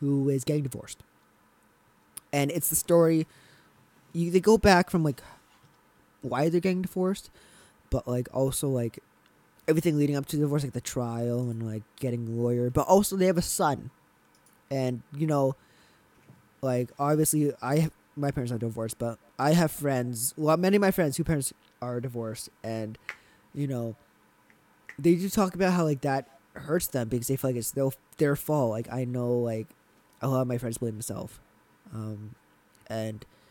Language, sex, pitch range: English, male, 115-155 Hz